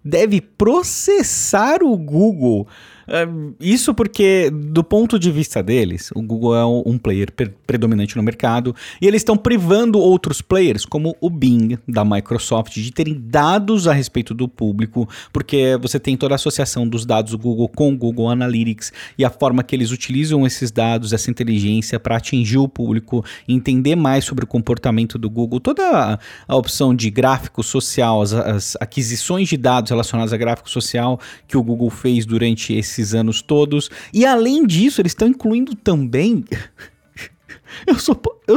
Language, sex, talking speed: Portuguese, male, 160 wpm